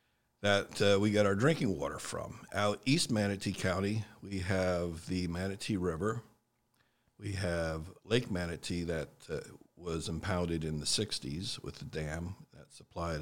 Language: English